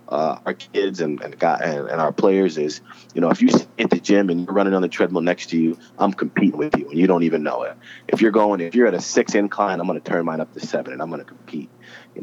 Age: 30-49